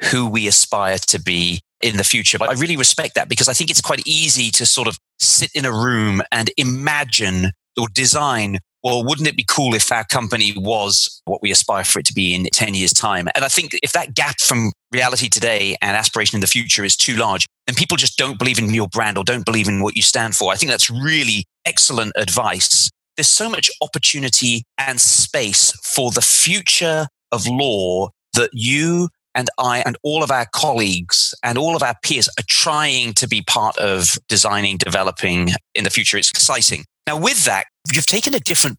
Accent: British